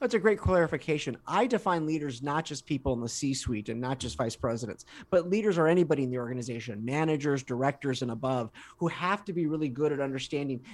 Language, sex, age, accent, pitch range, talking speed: English, male, 30-49, American, 130-170 Hz, 205 wpm